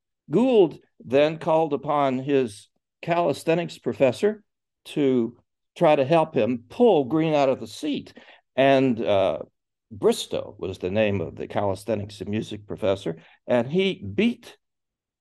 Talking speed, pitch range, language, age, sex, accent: 130 wpm, 105-140 Hz, English, 60-79, male, American